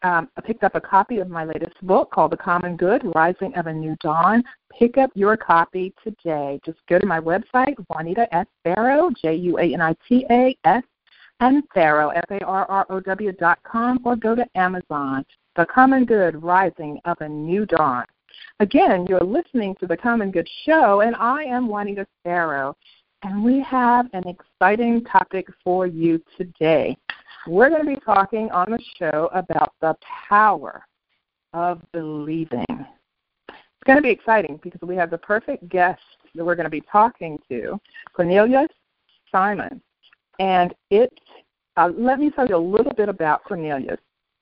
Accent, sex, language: American, female, English